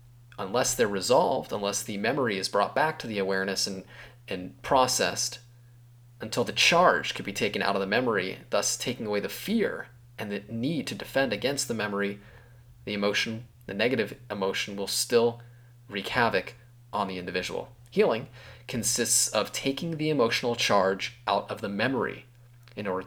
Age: 30-49